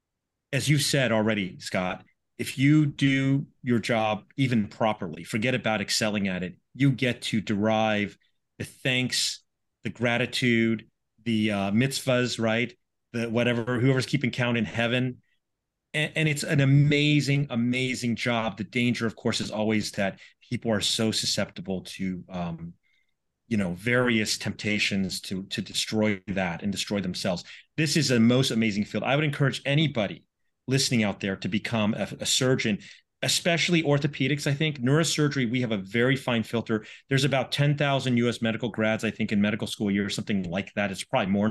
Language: English